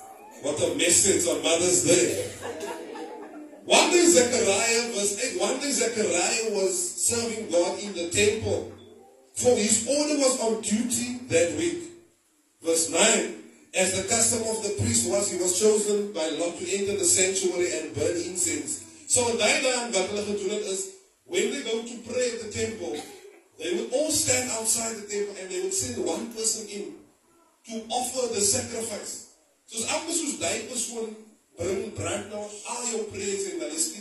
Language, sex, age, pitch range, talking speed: English, male, 30-49, 190-280 Hz, 150 wpm